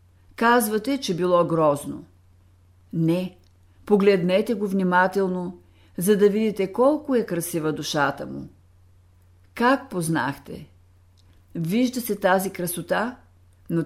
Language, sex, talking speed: Bulgarian, female, 100 wpm